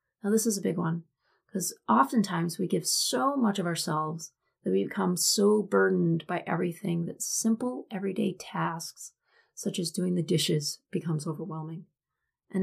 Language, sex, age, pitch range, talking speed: English, female, 30-49, 165-205 Hz, 155 wpm